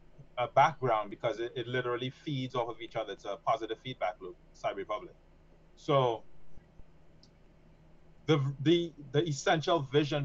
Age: 20-39